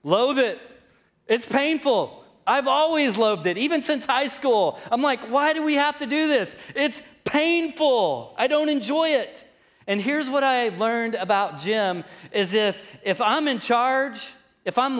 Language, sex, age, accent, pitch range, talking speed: English, male, 30-49, American, 200-255 Hz, 170 wpm